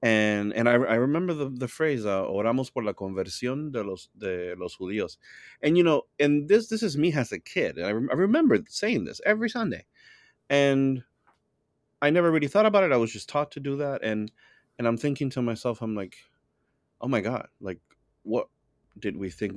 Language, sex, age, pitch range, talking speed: English, male, 30-49, 95-125 Hz, 210 wpm